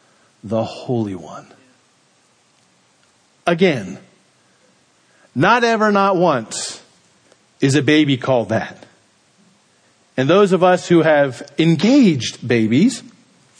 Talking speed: 95 wpm